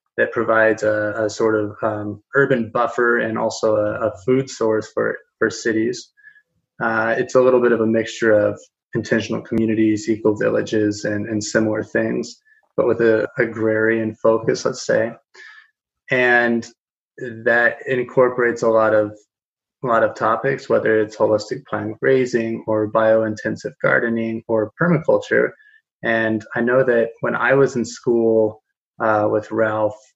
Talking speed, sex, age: 145 wpm, male, 20-39